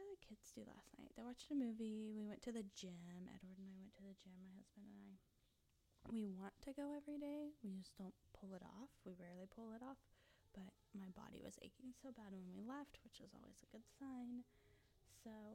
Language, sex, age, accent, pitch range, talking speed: English, female, 20-39, American, 185-235 Hz, 225 wpm